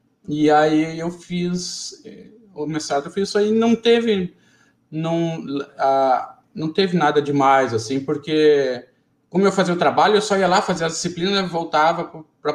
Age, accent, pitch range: 20-39, Brazilian, 135-170 Hz